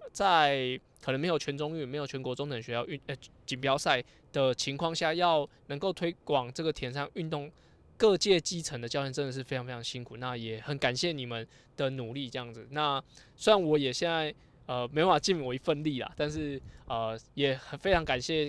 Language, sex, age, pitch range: Chinese, male, 20-39, 125-155 Hz